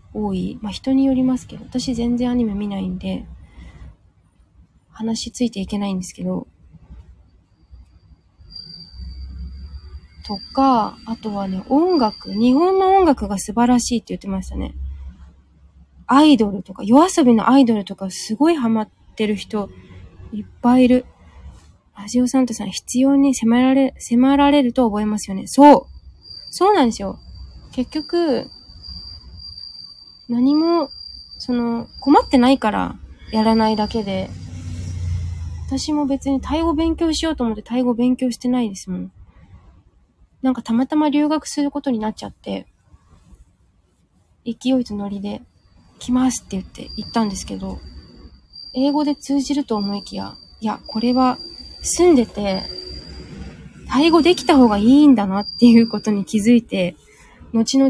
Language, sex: Japanese, female